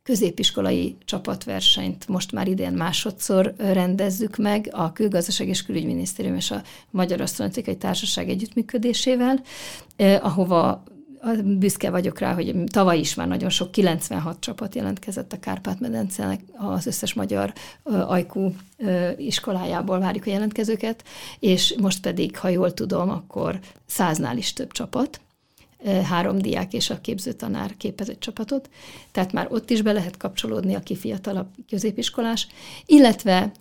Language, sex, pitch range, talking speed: Hungarian, female, 175-215 Hz, 130 wpm